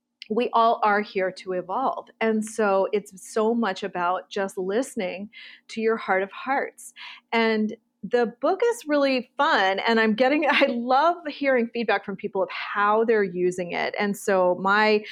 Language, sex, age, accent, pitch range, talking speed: English, female, 40-59, American, 200-255 Hz, 165 wpm